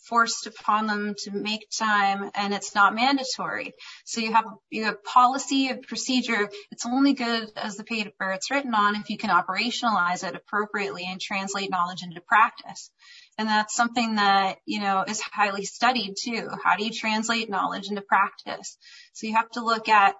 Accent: American